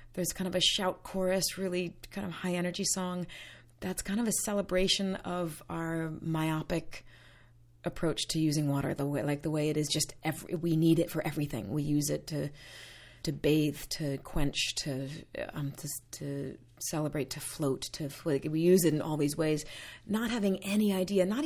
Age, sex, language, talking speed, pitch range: 30-49, female, English, 185 wpm, 140-180 Hz